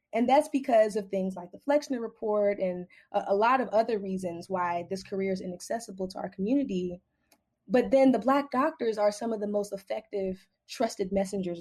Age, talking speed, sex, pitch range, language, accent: 20-39, 185 wpm, female, 180-225 Hz, English, American